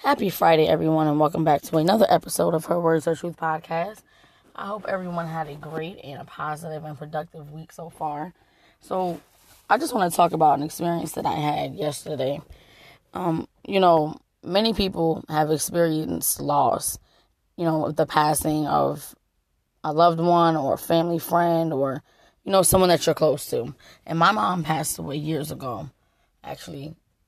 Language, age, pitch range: English, 20-39, 150-170 Hz